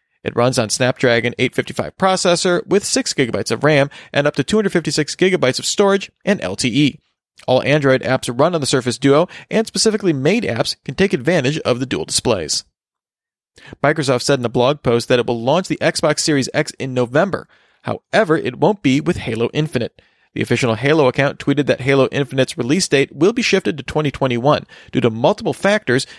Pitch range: 125-170 Hz